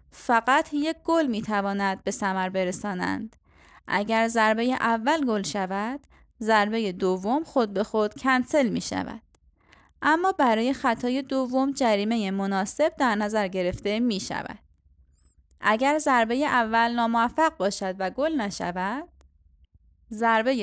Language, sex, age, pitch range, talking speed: Persian, female, 20-39, 195-265 Hz, 115 wpm